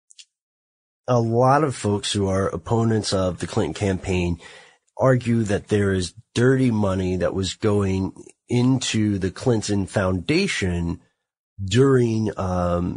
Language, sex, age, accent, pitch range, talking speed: English, male, 30-49, American, 90-110 Hz, 120 wpm